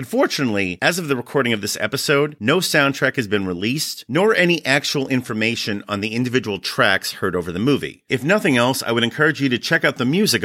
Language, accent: English, American